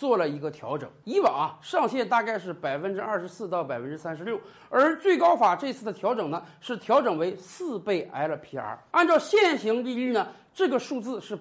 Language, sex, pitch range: Chinese, male, 200-315 Hz